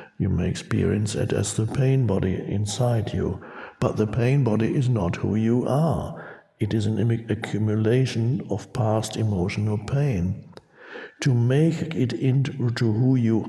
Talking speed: 145 wpm